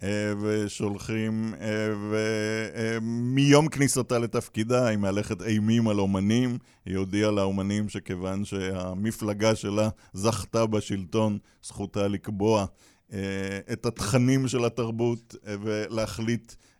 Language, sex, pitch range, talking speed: Hebrew, male, 100-115 Hz, 85 wpm